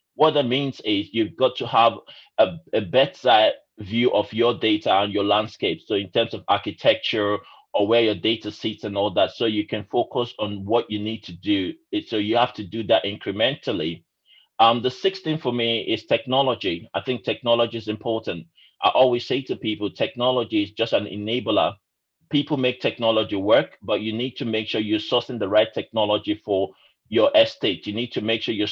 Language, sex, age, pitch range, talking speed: English, male, 30-49, 105-125 Hz, 200 wpm